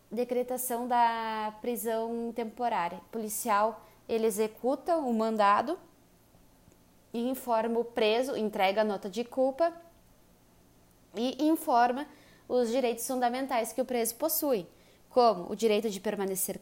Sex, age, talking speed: female, 20-39, 115 wpm